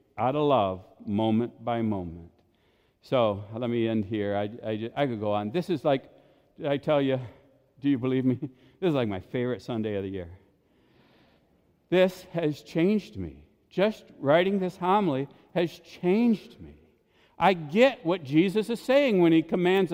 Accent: American